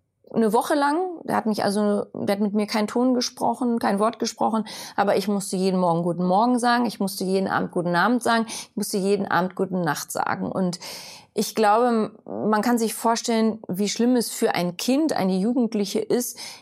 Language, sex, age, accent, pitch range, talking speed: German, female, 30-49, German, 190-235 Hz, 200 wpm